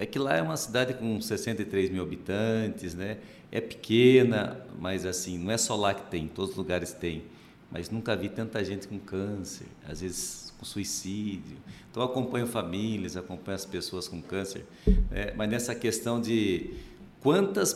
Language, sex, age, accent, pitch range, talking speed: Portuguese, male, 60-79, Brazilian, 95-120 Hz, 175 wpm